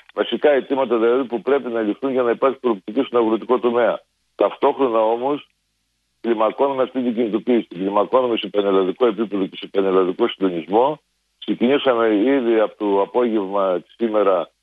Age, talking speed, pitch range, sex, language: 50-69, 135 wpm, 100-125 Hz, male, Greek